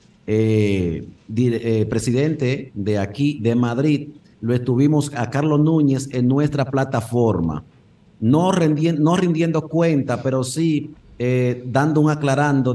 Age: 50-69